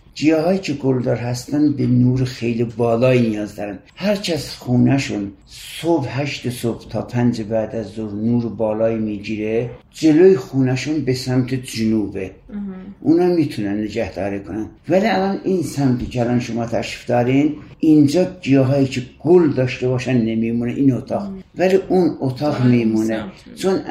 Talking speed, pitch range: 140 wpm, 115-145 Hz